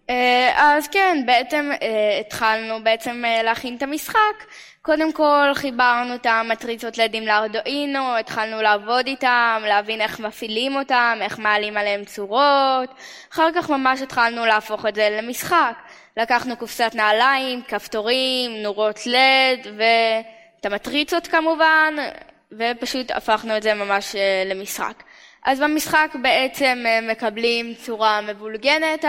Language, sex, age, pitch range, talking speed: Hebrew, female, 10-29, 220-285 Hz, 125 wpm